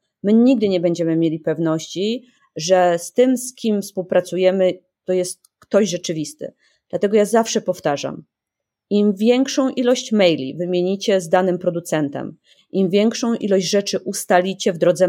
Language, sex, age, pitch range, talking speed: Polish, female, 30-49, 180-230 Hz, 140 wpm